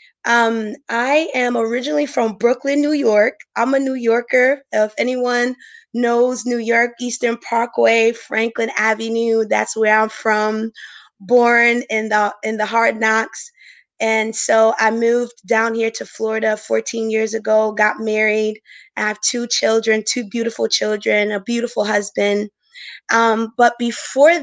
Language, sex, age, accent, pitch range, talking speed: English, female, 20-39, American, 210-240 Hz, 145 wpm